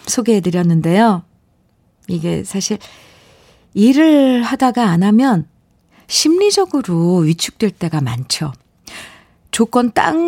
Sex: female